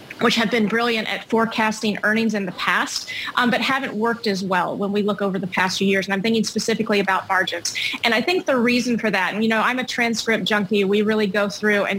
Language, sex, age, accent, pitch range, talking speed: English, female, 30-49, American, 200-235 Hz, 245 wpm